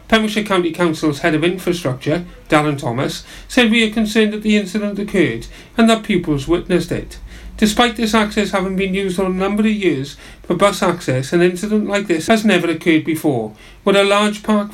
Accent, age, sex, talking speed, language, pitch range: British, 40-59, male, 190 wpm, English, 155-210 Hz